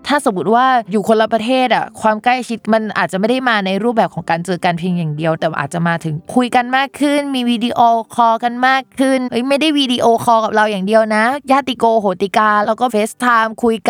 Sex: female